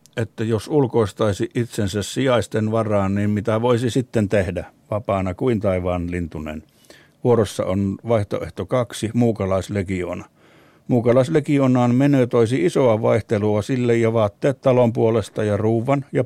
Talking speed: 120 wpm